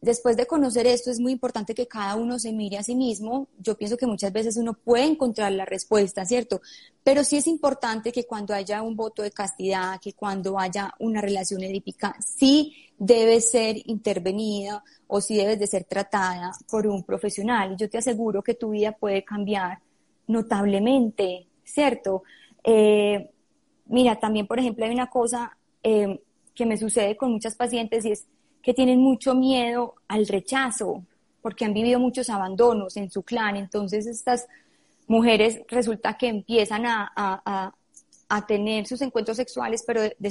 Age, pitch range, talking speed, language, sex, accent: 20-39, 205-245 Hz, 170 wpm, Spanish, female, Colombian